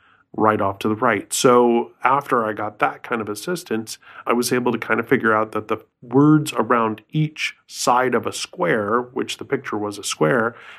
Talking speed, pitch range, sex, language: 200 wpm, 110-145 Hz, male, English